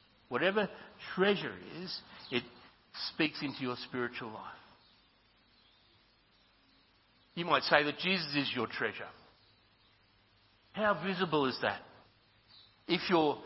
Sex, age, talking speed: male, 60-79, 105 wpm